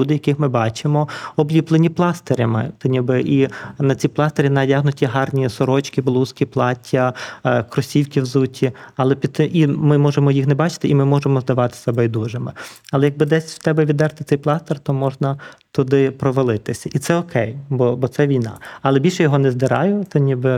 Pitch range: 130-150 Hz